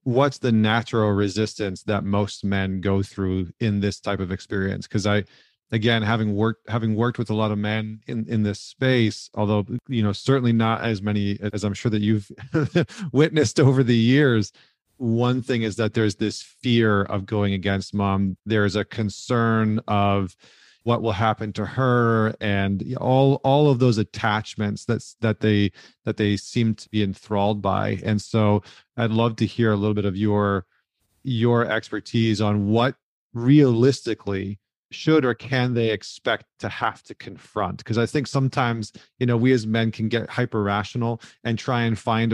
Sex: male